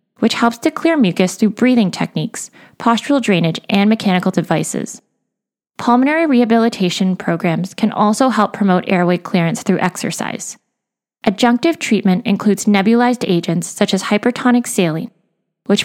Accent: American